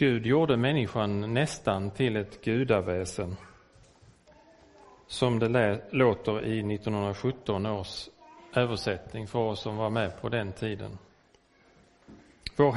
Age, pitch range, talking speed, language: 40-59, 105-145 Hz, 110 wpm, Swedish